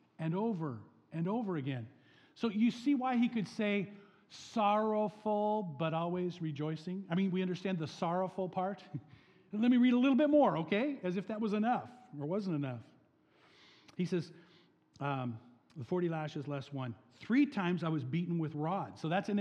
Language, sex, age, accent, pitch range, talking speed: English, male, 50-69, American, 145-195 Hz, 175 wpm